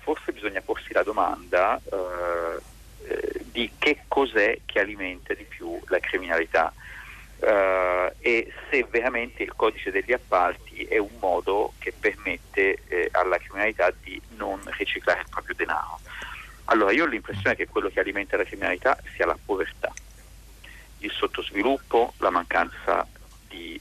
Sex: male